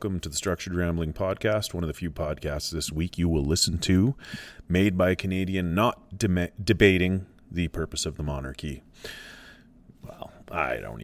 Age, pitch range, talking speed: 30-49, 80-110 Hz, 170 wpm